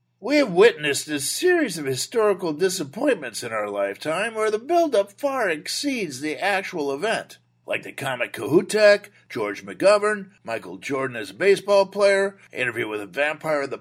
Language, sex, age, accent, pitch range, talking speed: English, male, 50-69, American, 155-210 Hz, 160 wpm